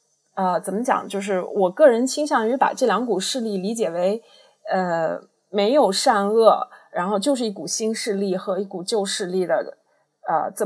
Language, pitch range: Chinese, 195-260 Hz